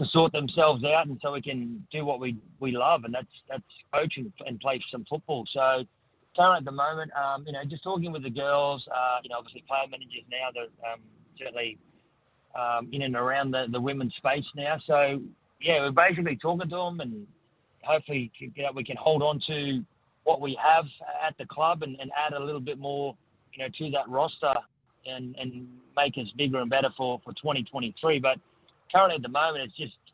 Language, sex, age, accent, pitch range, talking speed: English, male, 30-49, Australian, 125-150 Hz, 205 wpm